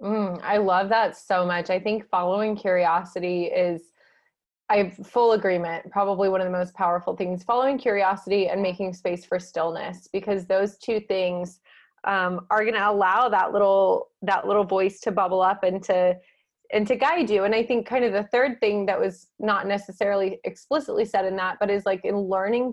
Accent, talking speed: American, 195 wpm